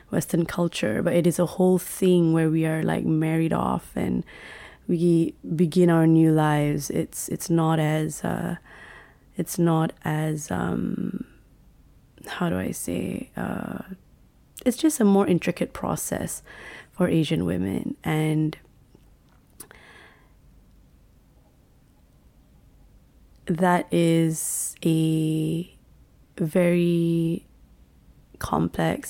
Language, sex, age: English, female, 20-39